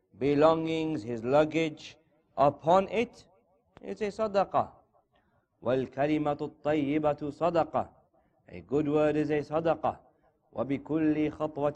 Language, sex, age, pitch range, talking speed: English, male, 40-59, 125-155 Hz, 85 wpm